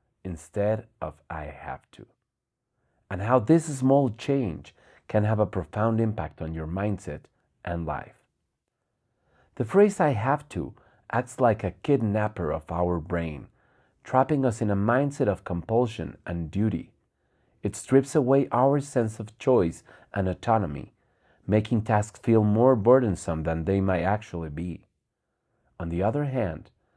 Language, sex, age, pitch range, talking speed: English, male, 40-59, 90-130 Hz, 140 wpm